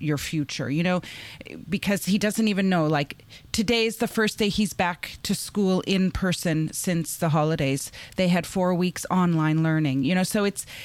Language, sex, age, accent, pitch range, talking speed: English, female, 30-49, American, 155-210 Hz, 185 wpm